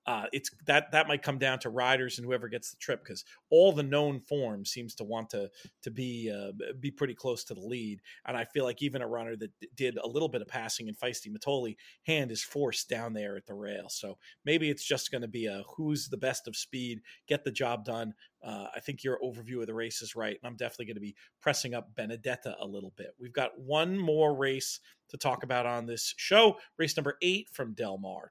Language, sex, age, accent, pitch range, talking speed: English, male, 40-59, American, 125-155 Hz, 240 wpm